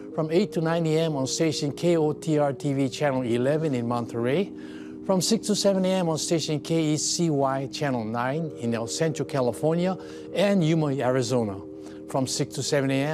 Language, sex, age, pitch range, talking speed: English, male, 50-69, 130-165 Hz, 150 wpm